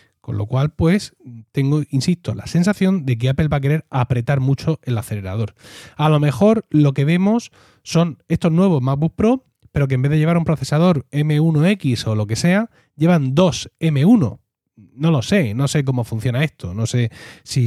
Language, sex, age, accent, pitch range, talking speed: Spanish, male, 30-49, Spanish, 120-160 Hz, 190 wpm